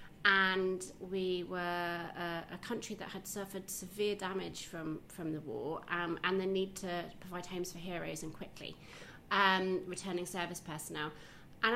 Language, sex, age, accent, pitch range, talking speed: English, female, 30-49, British, 175-215 Hz, 160 wpm